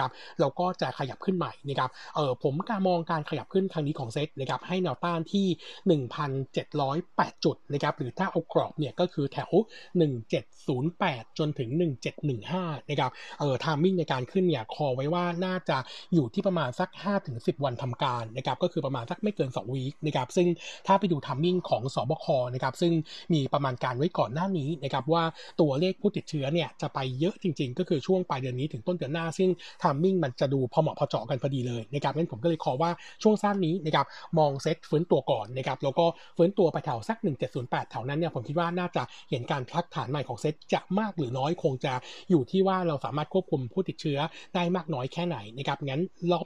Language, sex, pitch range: Thai, male, 140-175 Hz